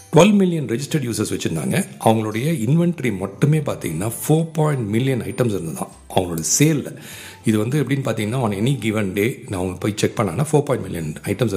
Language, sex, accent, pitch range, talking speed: Tamil, male, native, 105-150 Hz, 175 wpm